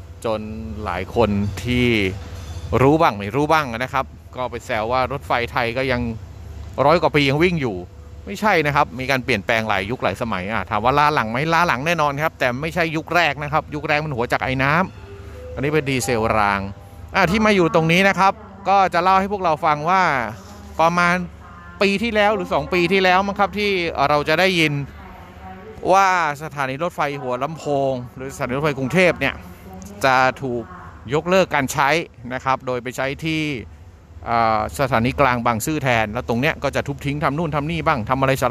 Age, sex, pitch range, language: 30-49, male, 105-155 Hz, Thai